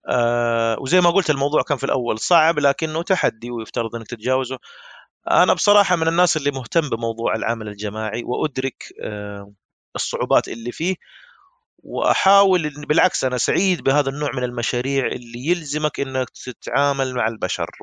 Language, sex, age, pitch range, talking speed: Arabic, male, 30-49, 125-170 Hz, 140 wpm